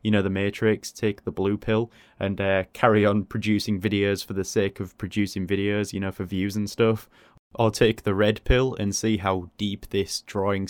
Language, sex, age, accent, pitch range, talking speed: English, male, 20-39, British, 95-110 Hz, 210 wpm